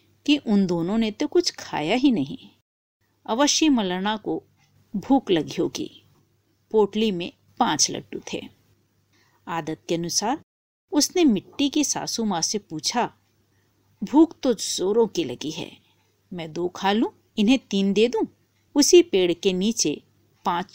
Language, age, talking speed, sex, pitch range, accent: Hindi, 50-69, 140 wpm, female, 170-250 Hz, native